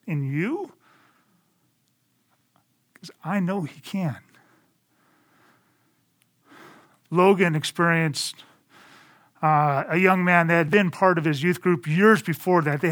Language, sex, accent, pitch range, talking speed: English, male, American, 150-195 Hz, 115 wpm